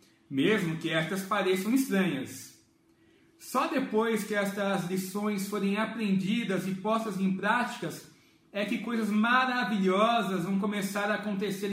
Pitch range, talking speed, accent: 185-235 Hz, 125 wpm, Brazilian